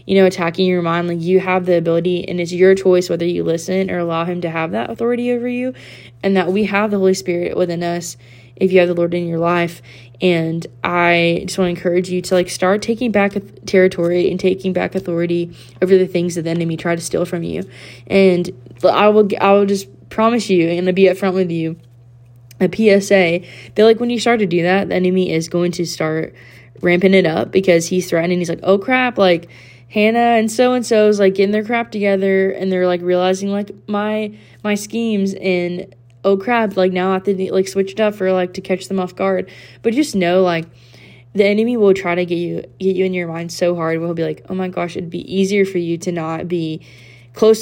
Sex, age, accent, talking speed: female, 20-39, American, 230 wpm